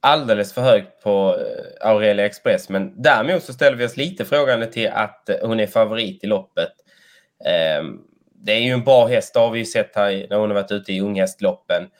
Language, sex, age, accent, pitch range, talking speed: Swedish, male, 20-39, native, 105-135 Hz, 195 wpm